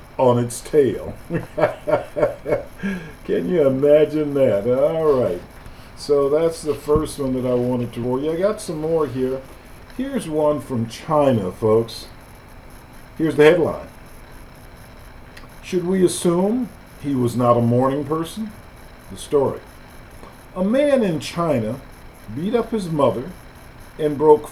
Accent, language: American, English